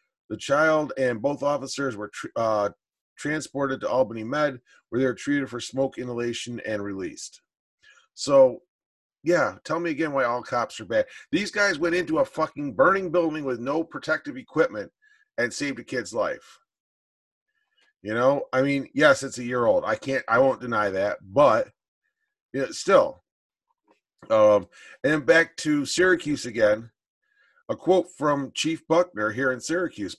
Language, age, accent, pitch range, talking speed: English, 40-59, American, 125-170 Hz, 160 wpm